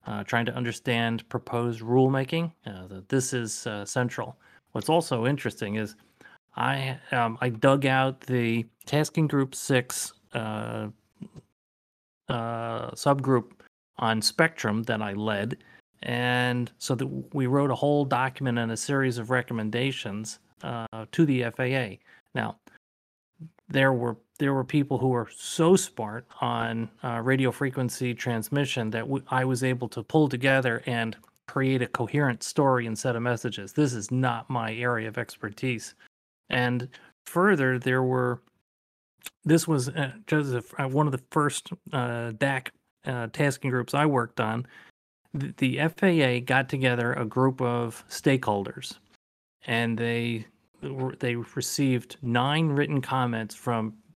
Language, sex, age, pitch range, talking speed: English, male, 30-49, 115-135 Hz, 135 wpm